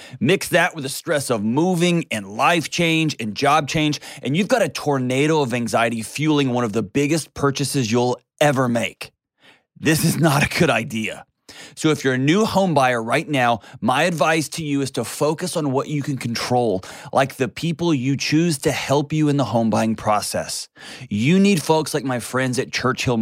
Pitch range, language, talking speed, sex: 130-160 Hz, English, 200 wpm, male